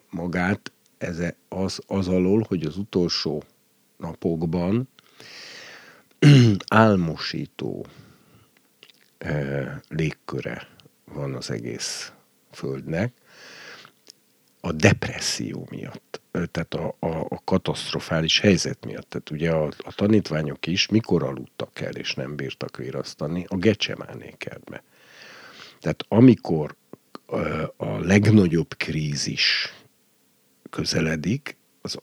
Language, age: Hungarian, 50-69